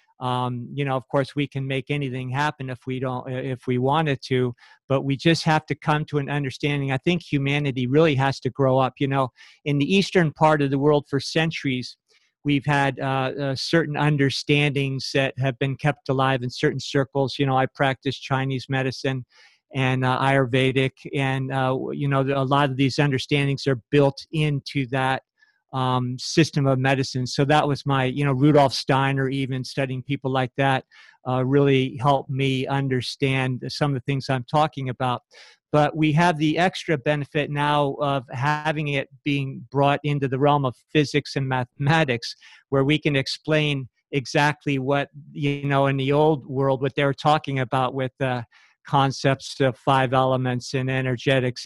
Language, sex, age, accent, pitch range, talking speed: English, male, 50-69, American, 130-145 Hz, 180 wpm